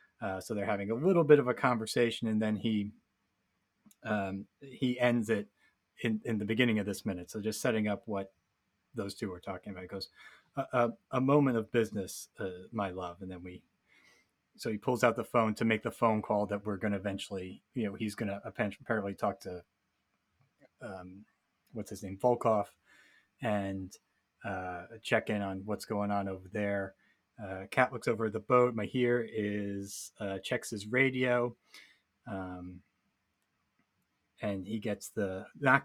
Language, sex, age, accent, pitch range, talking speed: English, male, 30-49, American, 100-120 Hz, 175 wpm